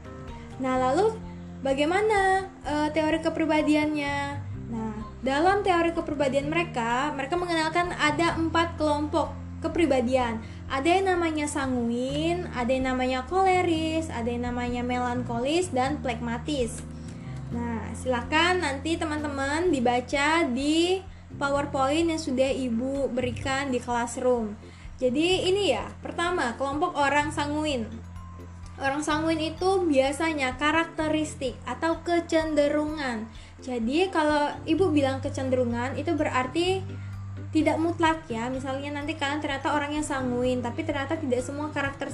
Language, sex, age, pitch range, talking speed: Indonesian, female, 20-39, 250-320 Hz, 115 wpm